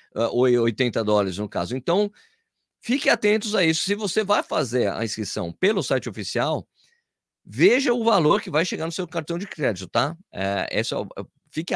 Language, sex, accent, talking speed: Portuguese, male, Brazilian, 160 wpm